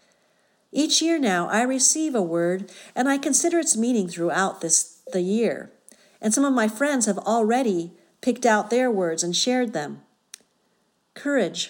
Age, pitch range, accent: 50-69, 180-255 Hz, American